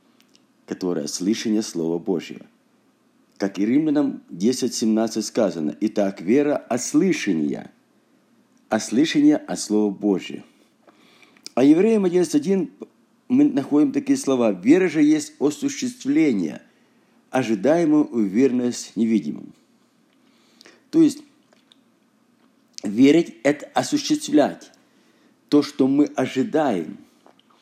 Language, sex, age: Russian, male, 50-69